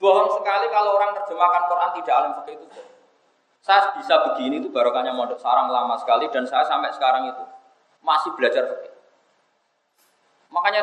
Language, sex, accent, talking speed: Indonesian, male, native, 160 wpm